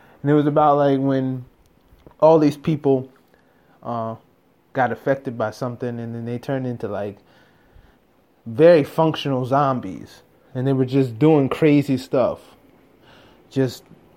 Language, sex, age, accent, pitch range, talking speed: English, male, 20-39, American, 125-155 Hz, 130 wpm